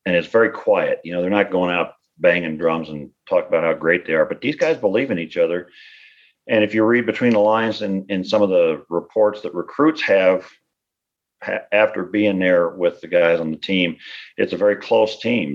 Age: 50-69